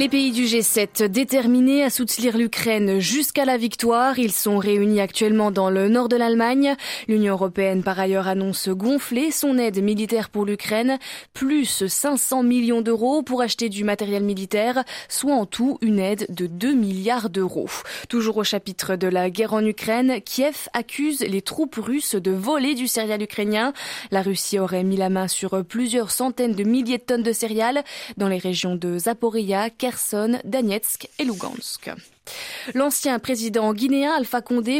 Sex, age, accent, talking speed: female, 20-39, French, 160 wpm